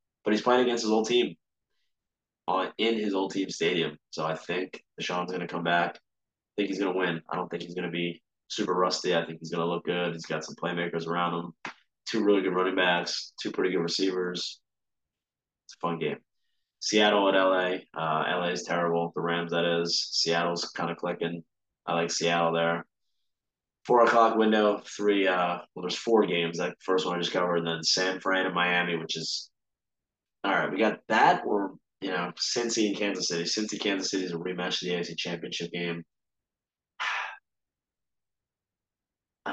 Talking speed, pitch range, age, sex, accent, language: 195 wpm, 85-95 Hz, 20-39, male, American, English